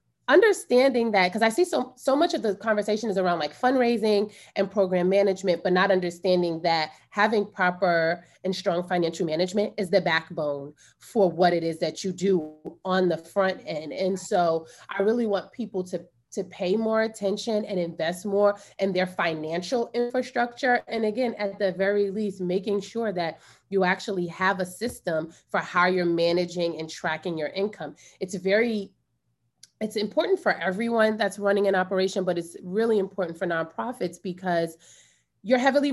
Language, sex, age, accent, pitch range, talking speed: English, female, 30-49, American, 175-210 Hz, 170 wpm